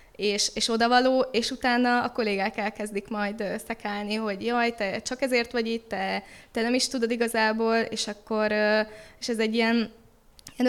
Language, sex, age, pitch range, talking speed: Hungarian, female, 20-39, 210-240 Hz, 170 wpm